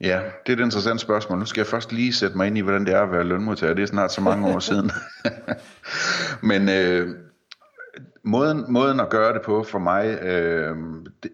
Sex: male